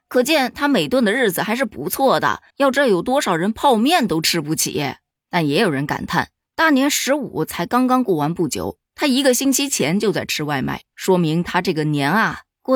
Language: Chinese